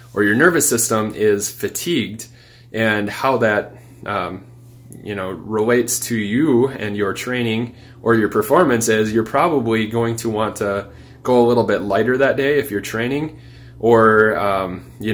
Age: 20-39